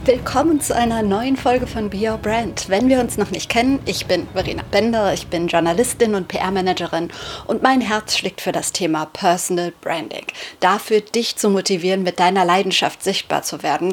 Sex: female